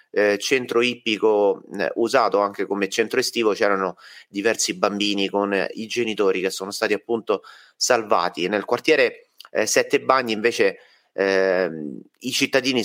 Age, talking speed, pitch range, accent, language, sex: 30-49, 140 wpm, 100-125 Hz, native, Italian, male